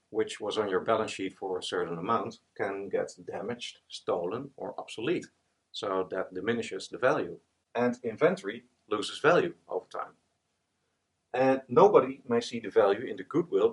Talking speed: 155 wpm